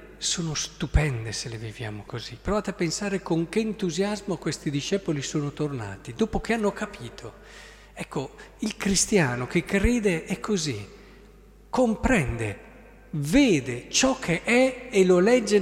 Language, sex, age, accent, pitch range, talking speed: Italian, male, 50-69, native, 140-200 Hz, 135 wpm